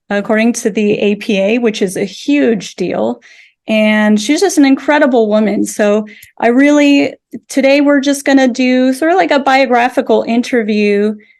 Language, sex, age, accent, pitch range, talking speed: English, female, 30-49, American, 210-245 Hz, 155 wpm